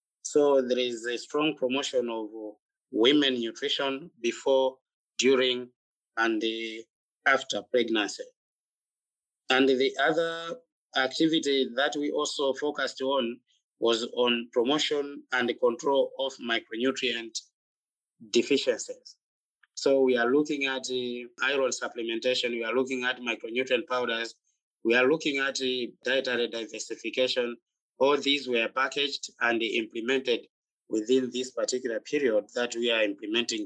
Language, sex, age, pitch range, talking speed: English, male, 30-49, 120-145 Hz, 120 wpm